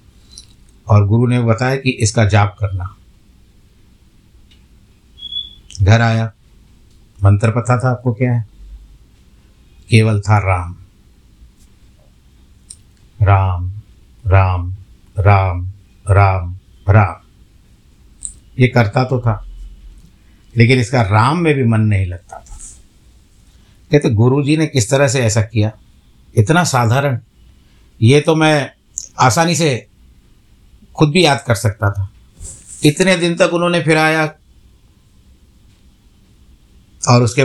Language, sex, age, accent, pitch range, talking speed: Hindi, male, 60-79, native, 95-120 Hz, 105 wpm